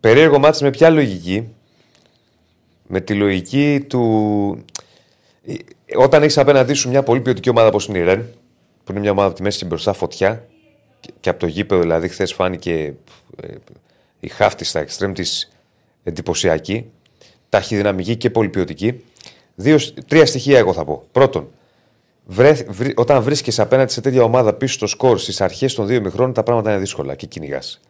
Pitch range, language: 95-130 Hz, Greek